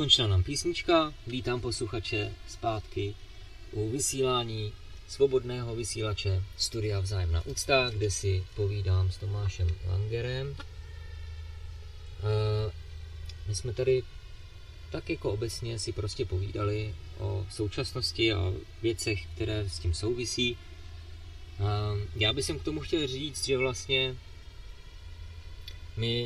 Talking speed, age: 105 wpm, 20-39